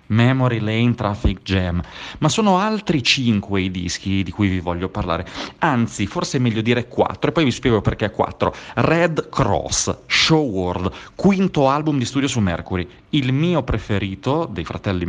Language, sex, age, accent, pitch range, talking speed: Italian, male, 30-49, native, 95-120 Hz, 165 wpm